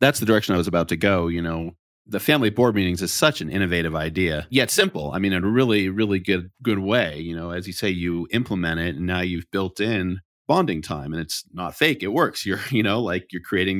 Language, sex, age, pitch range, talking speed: English, male, 30-49, 90-115 Hz, 250 wpm